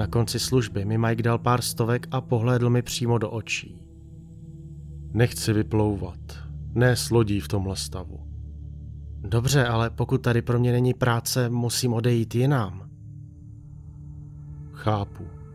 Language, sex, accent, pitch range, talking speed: Czech, male, native, 95-130 Hz, 125 wpm